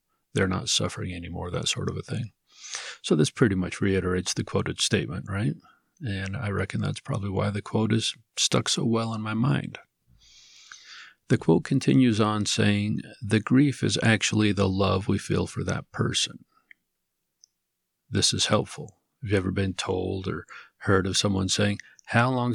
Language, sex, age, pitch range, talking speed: English, male, 50-69, 95-115 Hz, 170 wpm